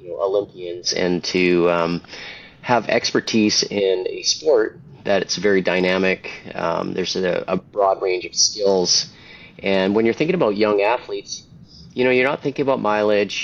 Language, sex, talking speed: English, male, 155 wpm